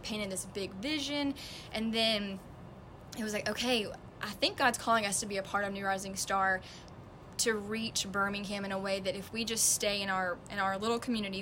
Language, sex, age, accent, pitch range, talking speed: English, female, 10-29, American, 195-240 Hz, 210 wpm